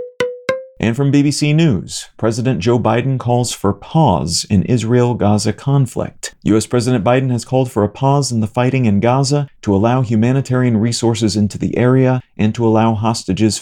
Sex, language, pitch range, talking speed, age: male, English, 110-130 Hz, 165 wpm, 40-59